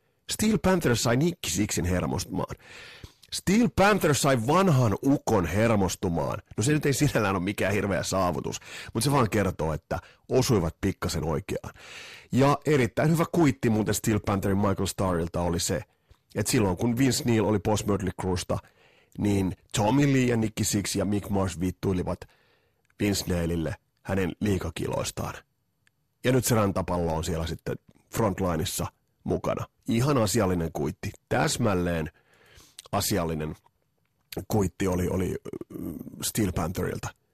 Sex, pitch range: male, 90-125 Hz